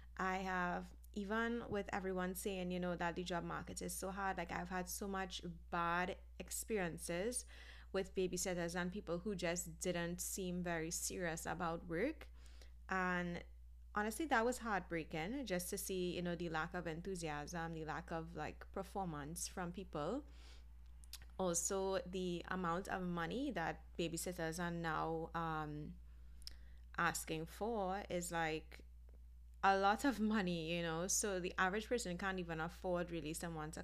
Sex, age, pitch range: female, 20-39, 160-190 Hz